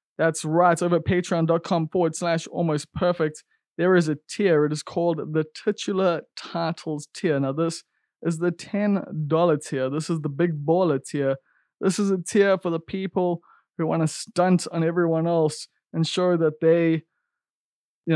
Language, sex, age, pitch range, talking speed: English, male, 20-39, 145-175 Hz, 170 wpm